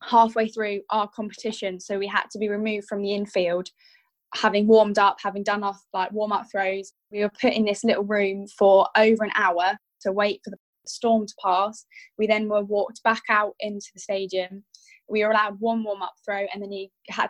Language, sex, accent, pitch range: English, female, British, 200-225 Hz